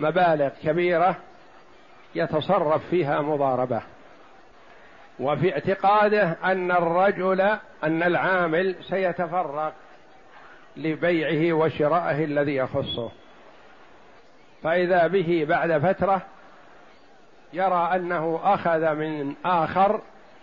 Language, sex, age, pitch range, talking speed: Arabic, male, 60-79, 160-190 Hz, 75 wpm